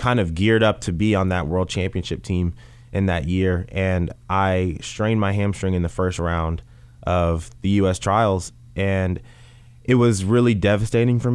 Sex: male